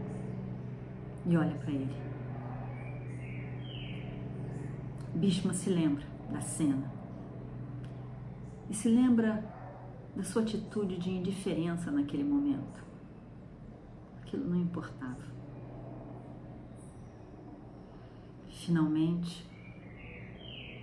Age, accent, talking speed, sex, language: 40-59, Brazilian, 65 wpm, female, Portuguese